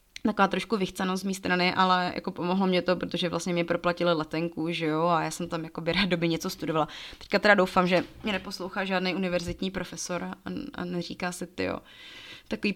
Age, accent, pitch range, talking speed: 30-49, native, 180-210 Hz, 200 wpm